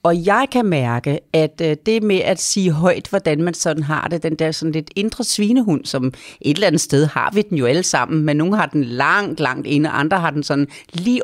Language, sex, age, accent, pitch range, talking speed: Danish, female, 40-59, native, 150-185 Hz, 235 wpm